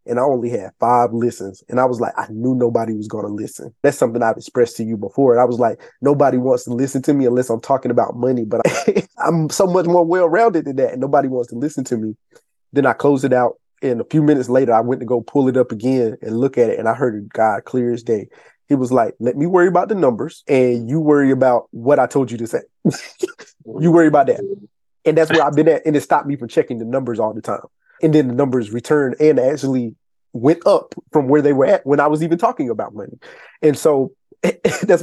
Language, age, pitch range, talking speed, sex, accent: English, 20-39, 120-145 Hz, 255 wpm, male, American